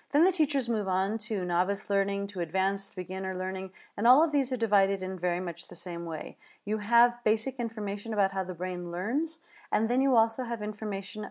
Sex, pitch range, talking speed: female, 180-220 Hz, 205 wpm